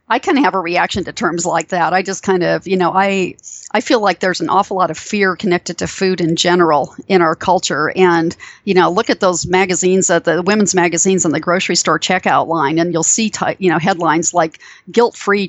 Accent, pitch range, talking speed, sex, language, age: American, 175-200 Hz, 230 wpm, female, English, 40-59